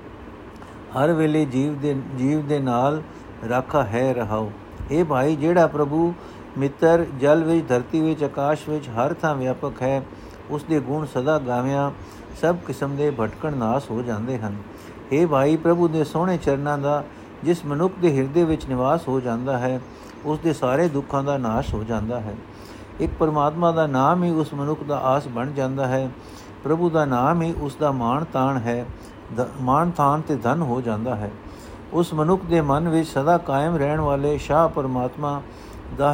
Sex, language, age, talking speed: male, Punjabi, 60-79, 160 wpm